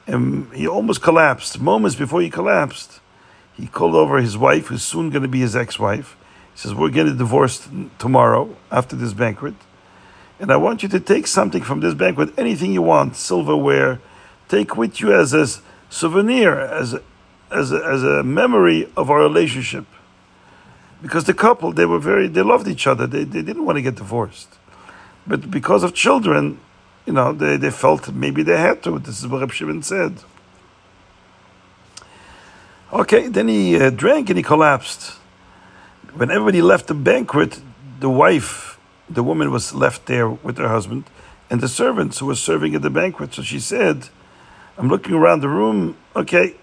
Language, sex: English, male